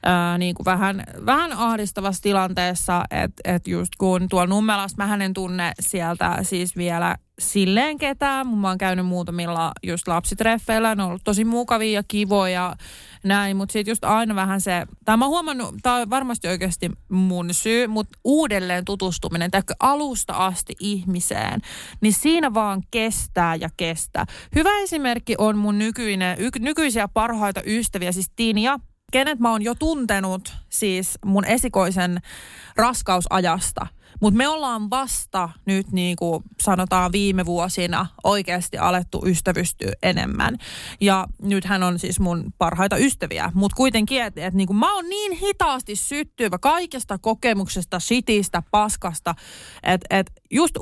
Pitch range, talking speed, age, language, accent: 180-230 Hz, 145 wpm, 20-39, Finnish, native